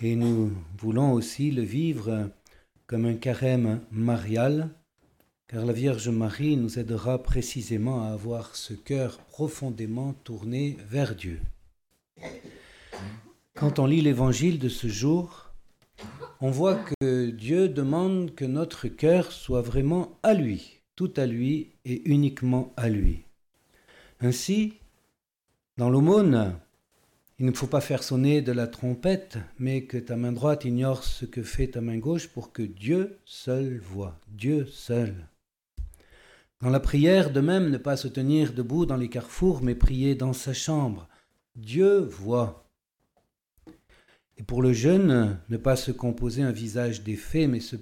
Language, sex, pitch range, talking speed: French, male, 115-140 Hz, 145 wpm